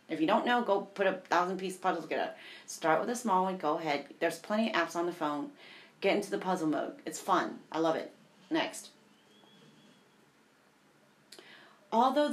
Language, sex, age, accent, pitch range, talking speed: English, female, 30-49, American, 170-220 Hz, 180 wpm